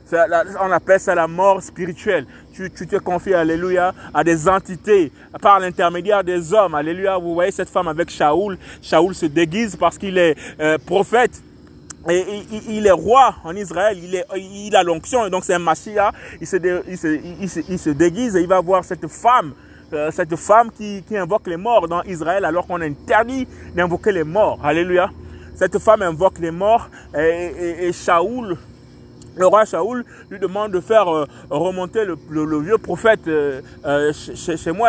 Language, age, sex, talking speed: French, 30-49, male, 195 wpm